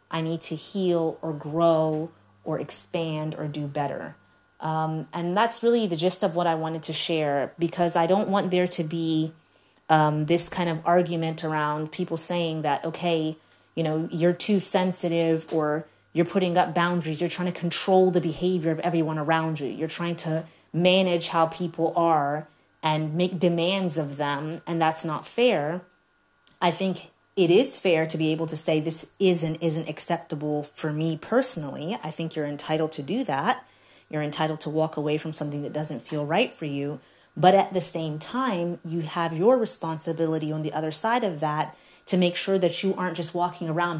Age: 30-49